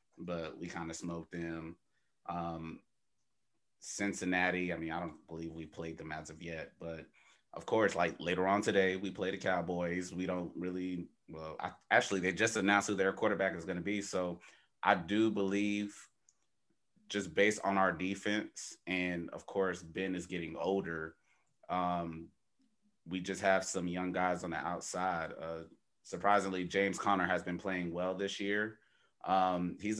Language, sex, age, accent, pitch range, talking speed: English, male, 30-49, American, 85-95 Hz, 165 wpm